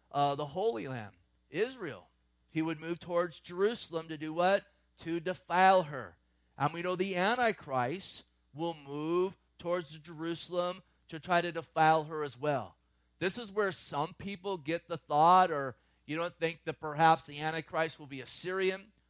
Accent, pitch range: American, 140-170 Hz